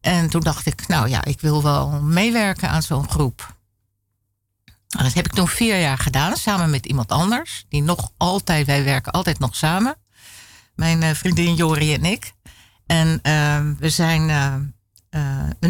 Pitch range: 130-175 Hz